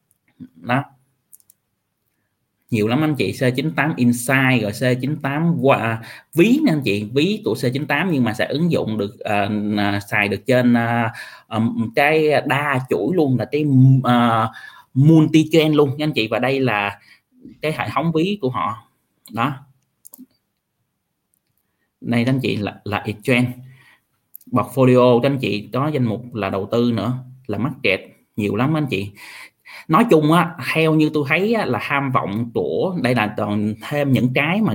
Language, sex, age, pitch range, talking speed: Vietnamese, male, 20-39, 115-145 Hz, 165 wpm